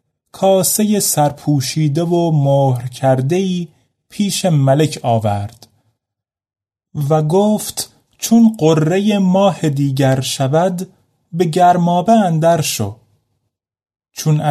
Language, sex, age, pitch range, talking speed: Persian, male, 30-49, 125-185 Hz, 85 wpm